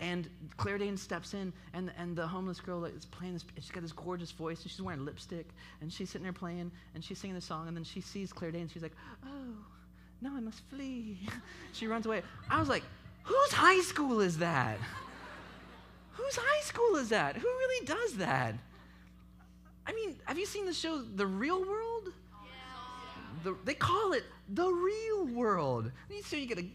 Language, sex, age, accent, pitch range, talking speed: English, male, 30-49, American, 155-235 Hz, 200 wpm